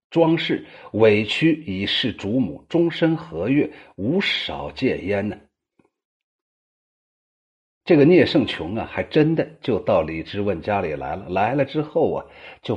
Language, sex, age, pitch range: Chinese, male, 50-69, 100-155 Hz